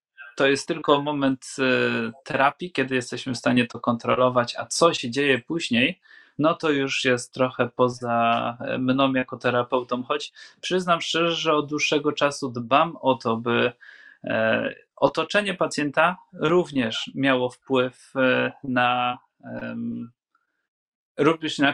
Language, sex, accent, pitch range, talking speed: Polish, male, native, 120-155 Hz, 120 wpm